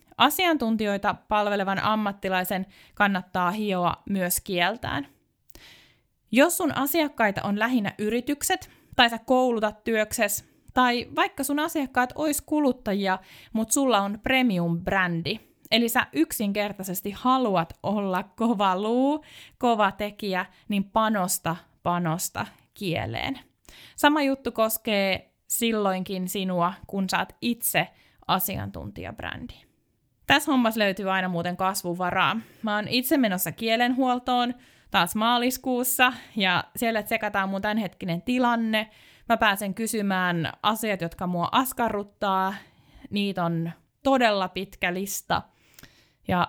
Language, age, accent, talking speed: Finnish, 20-39, native, 105 wpm